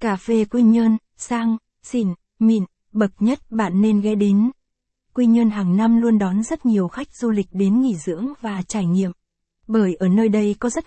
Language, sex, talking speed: Vietnamese, female, 200 wpm